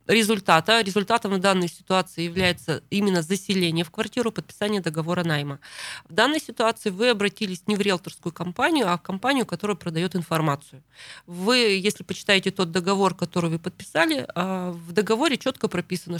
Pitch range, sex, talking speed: 165-215 Hz, female, 150 wpm